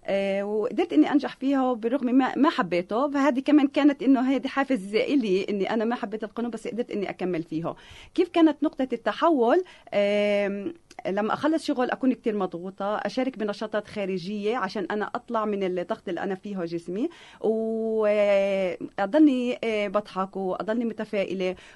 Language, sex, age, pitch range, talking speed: Arabic, female, 30-49, 190-250 Hz, 145 wpm